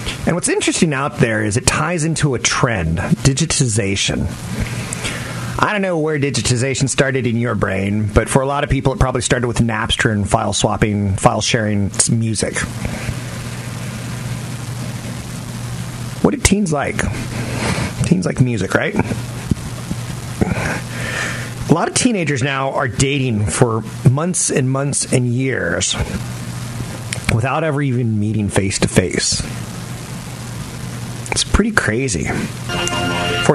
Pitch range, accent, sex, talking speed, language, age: 110-140 Hz, American, male, 120 wpm, English, 30-49